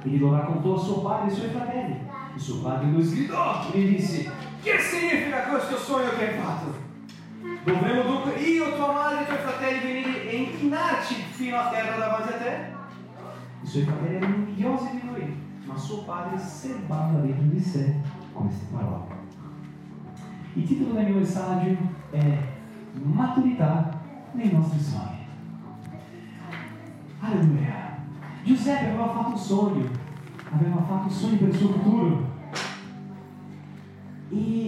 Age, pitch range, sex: 30-49, 155-235 Hz, male